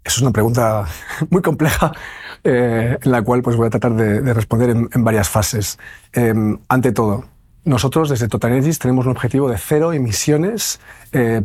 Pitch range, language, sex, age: 110-155 Hz, Spanish, male, 40-59